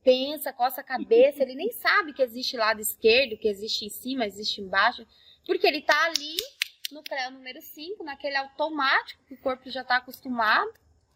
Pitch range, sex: 240-350 Hz, female